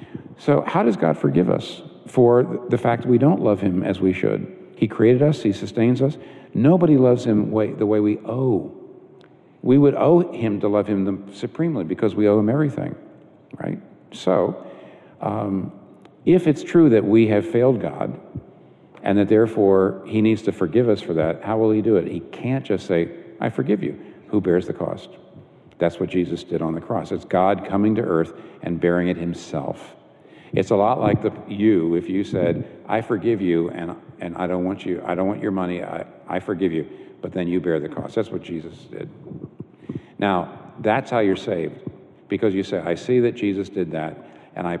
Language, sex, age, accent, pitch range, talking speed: English, male, 50-69, American, 90-115 Hz, 200 wpm